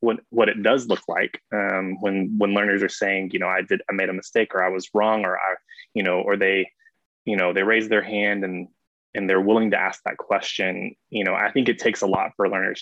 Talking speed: 255 wpm